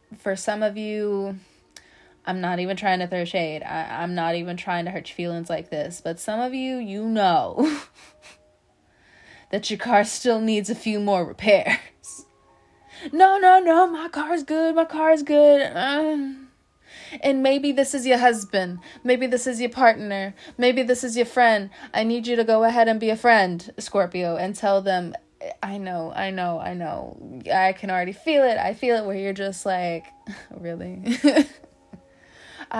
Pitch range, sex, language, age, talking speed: 185-255 Hz, female, English, 20-39, 180 wpm